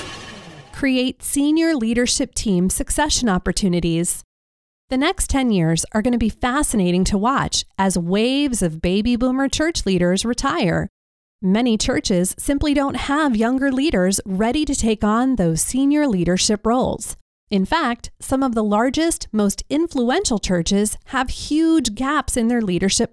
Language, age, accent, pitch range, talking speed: English, 30-49, American, 195-270 Hz, 145 wpm